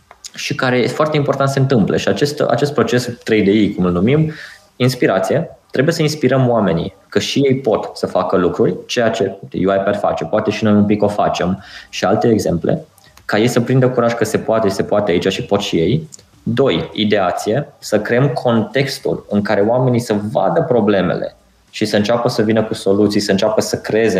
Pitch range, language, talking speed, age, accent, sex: 100-125 Hz, Romanian, 195 wpm, 20-39, native, male